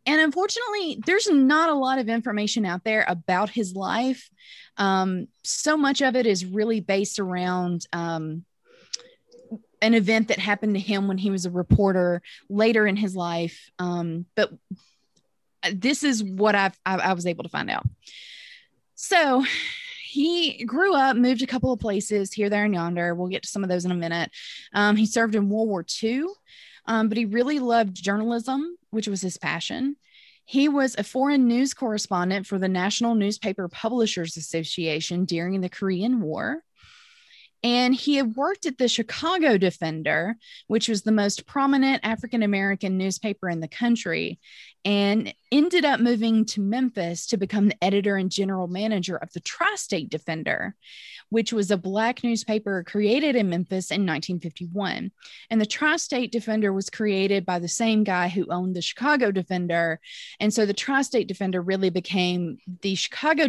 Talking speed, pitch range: 165 wpm, 185-255 Hz